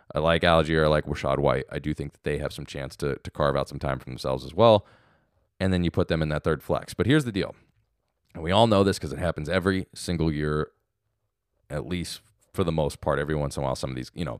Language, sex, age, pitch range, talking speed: English, male, 20-39, 75-100 Hz, 270 wpm